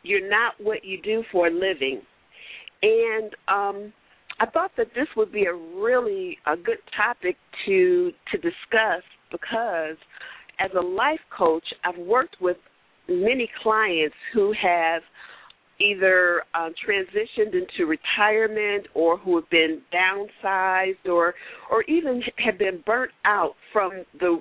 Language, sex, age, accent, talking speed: English, female, 50-69, American, 140 wpm